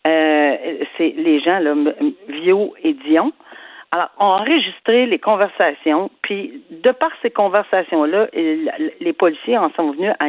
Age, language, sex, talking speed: 50-69, French, female, 140 wpm